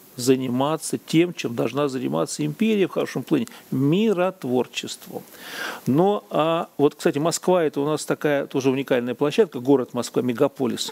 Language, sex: Russian, male